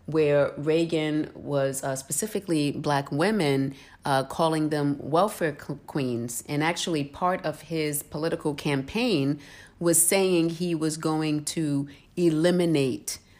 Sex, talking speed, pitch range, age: female, 115 wpm, 130-160 Hz, 40-59